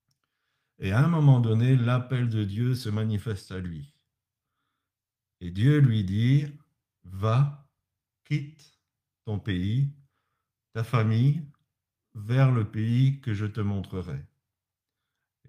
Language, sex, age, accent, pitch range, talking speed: French, male, 50-69, French, 100-135 Hz, 120 wpm